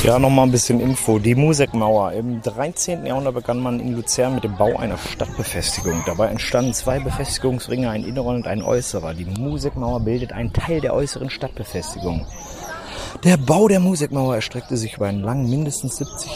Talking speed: 170 wpm